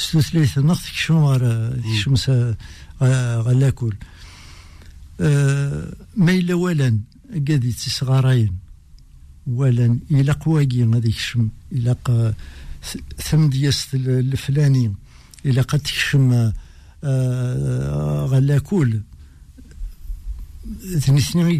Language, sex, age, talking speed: French, male, 60-79, 70 wpm